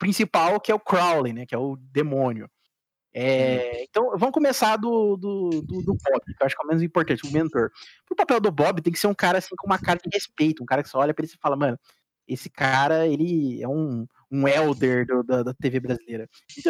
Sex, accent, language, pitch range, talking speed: male, Brazilian, Portuguese, 135-185 Hz, 240 wpm